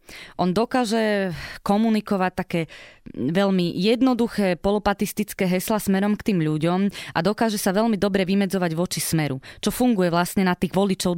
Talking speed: 140 wpm